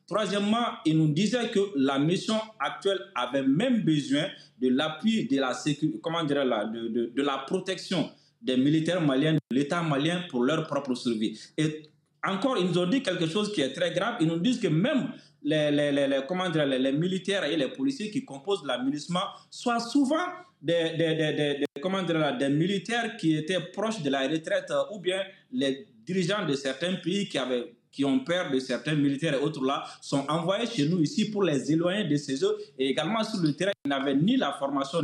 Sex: male